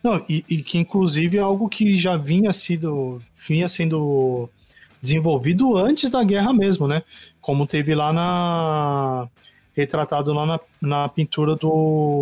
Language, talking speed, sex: Portuguese, 140 wpm, male